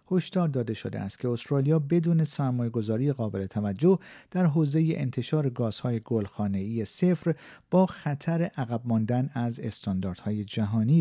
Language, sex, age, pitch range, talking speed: Persian, male, 50-69, 105-145 Hz, 125 wpm